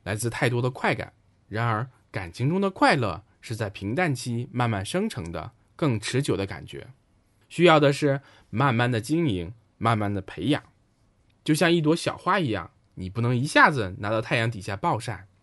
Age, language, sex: 20-39, Chinese, male